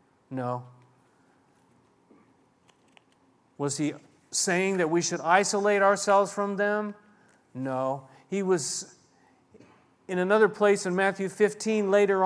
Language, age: English, 40-59